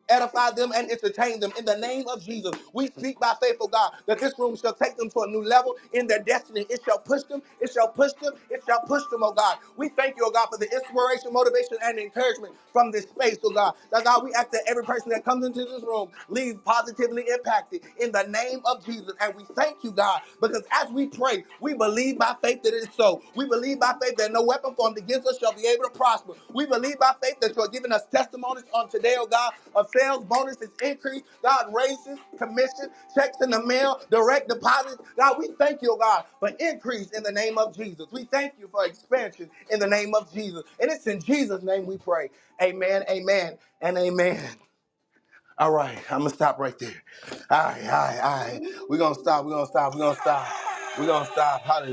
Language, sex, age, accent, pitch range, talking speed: English, male, 30-49, American, 205-260 Hz, 230 wpm